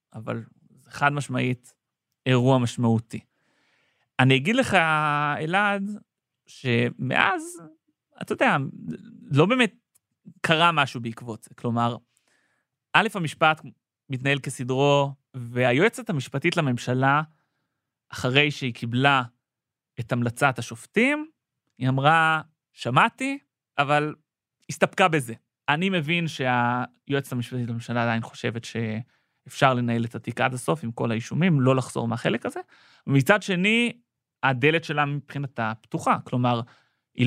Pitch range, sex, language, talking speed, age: 125-160 Hz, male, Hebrew, 110 wpm, 30-49